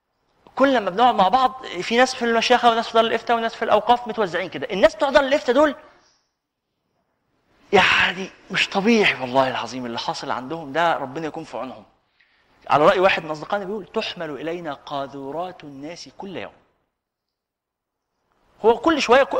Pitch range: 200-260 Hz